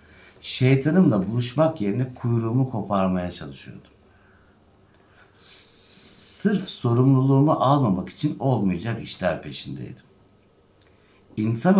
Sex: male